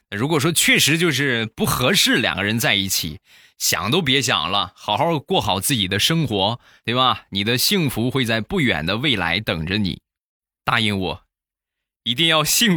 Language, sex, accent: Chinese, male, native